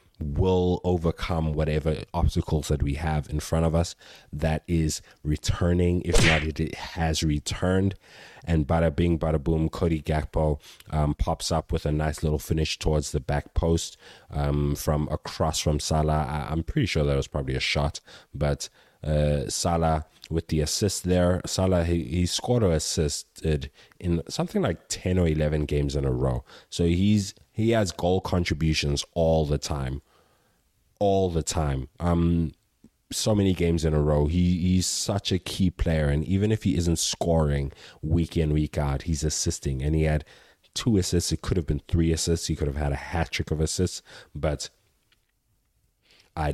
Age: 30-49